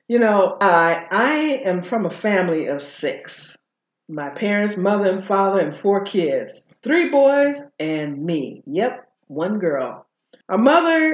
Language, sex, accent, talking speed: English, female, American, 145 wpm